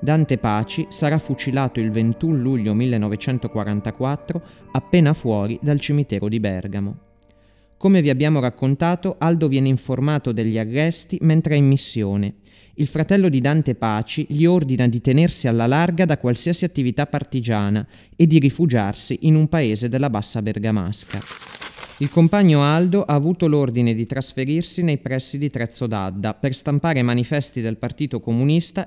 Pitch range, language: 110-155 Hz, Italian